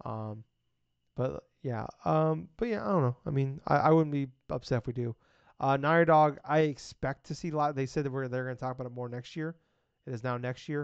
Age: 20-39